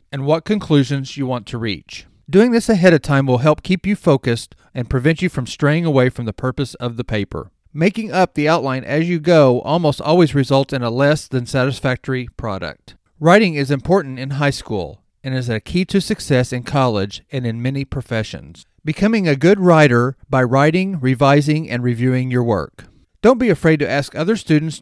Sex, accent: male, American